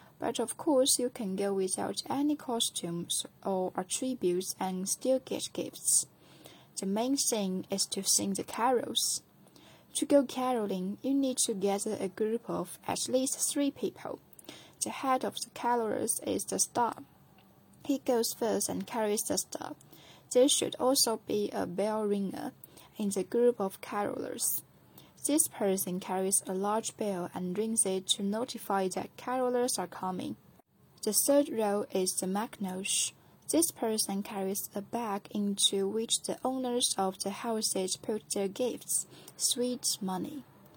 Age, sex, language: 10-29, female, Chinese